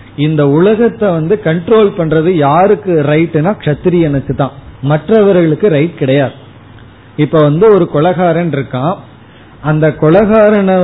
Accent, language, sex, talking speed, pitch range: native, Tamil, male, 100 wpm, 140-185 Hz